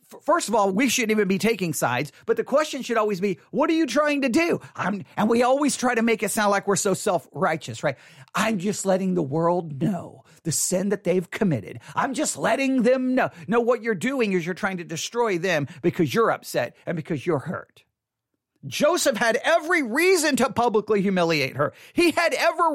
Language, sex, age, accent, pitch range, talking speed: English, male, 40-59, American, 175-275 Hz, 205 wpm